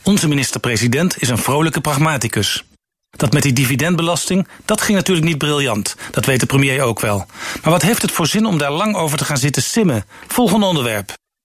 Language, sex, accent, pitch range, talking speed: Dutch, male, Dutch, 135-180 Hz, 195 wpm